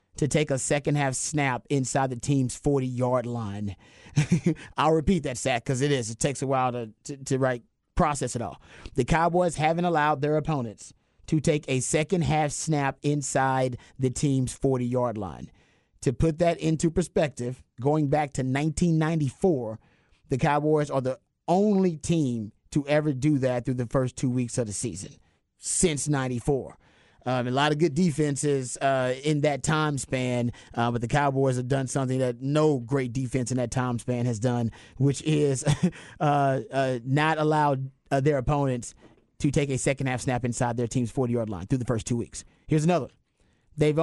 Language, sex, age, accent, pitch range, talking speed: English, male, 30-49, American, 125-155 Hz, 175 wpm